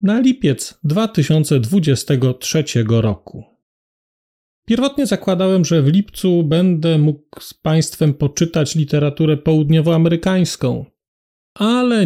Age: 40-59